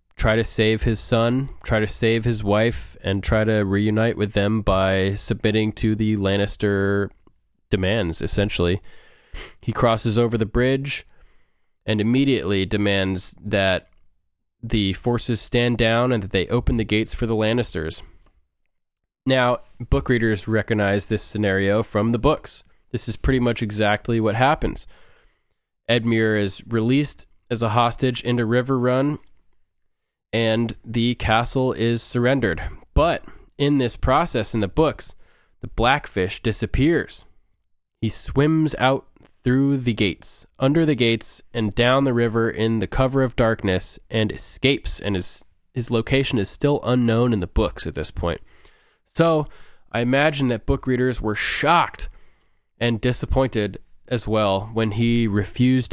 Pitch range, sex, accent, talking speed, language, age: 100-120 Hz, male, American, 145 wpm, English, 20-39